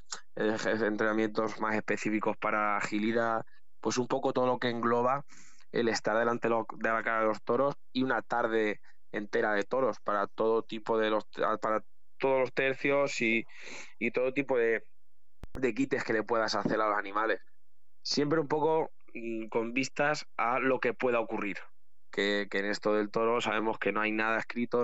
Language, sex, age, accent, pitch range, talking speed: Spanish, male, 20-39, Spanish, 105-120 Hz, 175 wpm